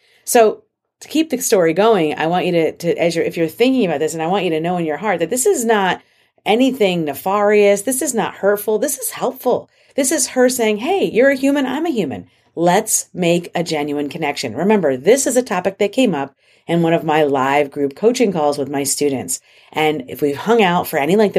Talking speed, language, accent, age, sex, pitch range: 230 wpm, English, American, 40-59, female, 150-205 Hz